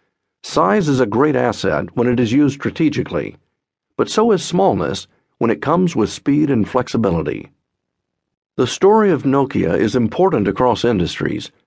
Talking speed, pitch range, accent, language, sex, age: 150 wpm, 105-145 Hz, American, English, male, 50-69